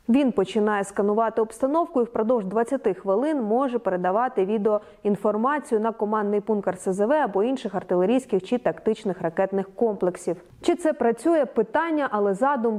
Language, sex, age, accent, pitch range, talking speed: Ukrainian, female, 30-49, native, 210-270 Hz, 135 wpm